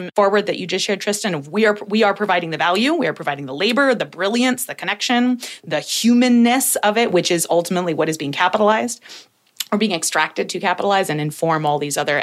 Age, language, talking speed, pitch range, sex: 30-49, English, 205 wpm, 165-205 Hz, female